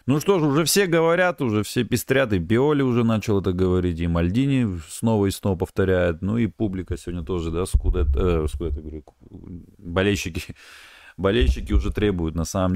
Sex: male